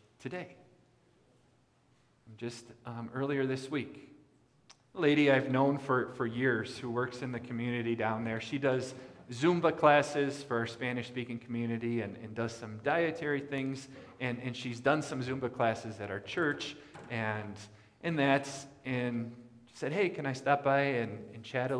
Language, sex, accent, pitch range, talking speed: English, male, American, 110-130 Hz, 160 wpm